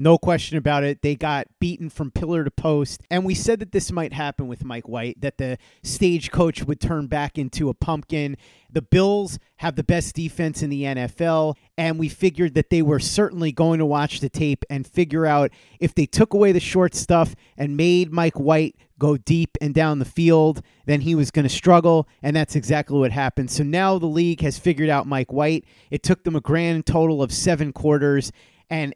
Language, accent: English, American